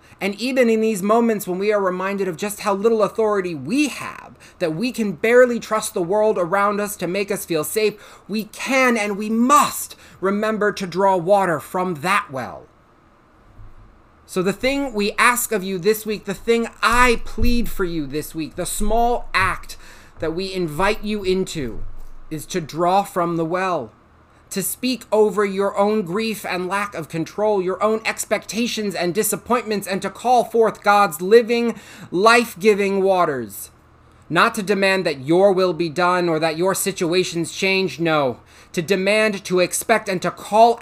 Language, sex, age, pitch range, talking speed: English, male, 30-49, 170-215 Hz, 170 wpm